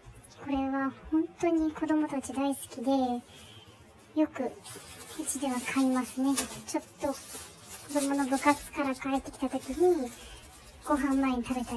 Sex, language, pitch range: male, Japanese, 260-315 Hz